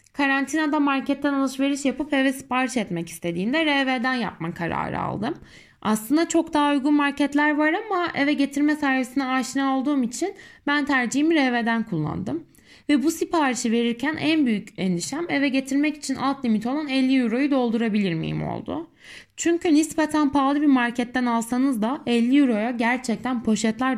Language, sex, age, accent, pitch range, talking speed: Turkish, female, 10-29, native, 230-285 Hz, 145 wpm